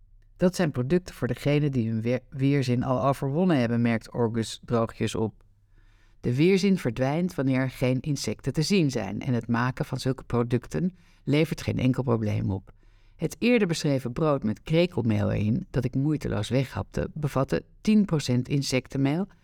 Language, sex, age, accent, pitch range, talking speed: Dutch, female, 60-79, Dutch, 110-150 Hz, 155 wpm